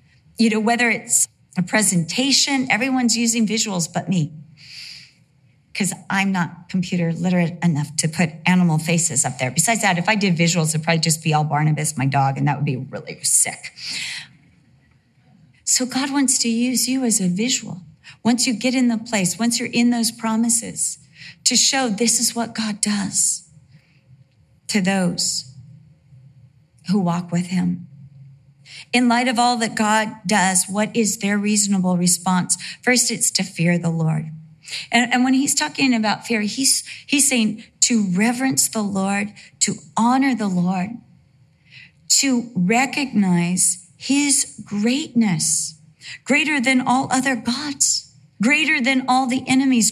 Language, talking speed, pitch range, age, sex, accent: English, 150 wpm, 160-245 Hz, 40-59, female, American